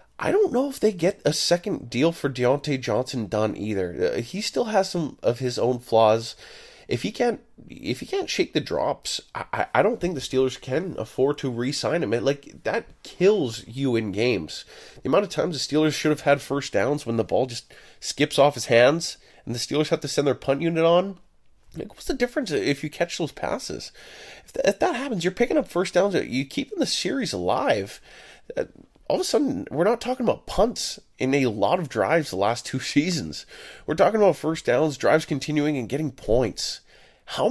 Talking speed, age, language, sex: 200 wpm, 20-39, English, male